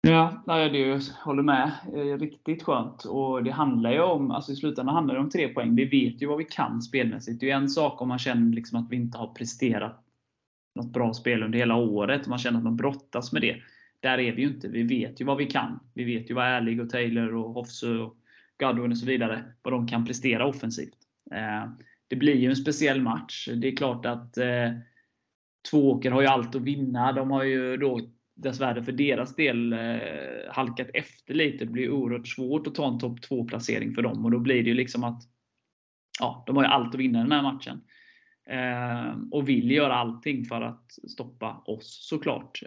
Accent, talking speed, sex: native, 210 wpm, male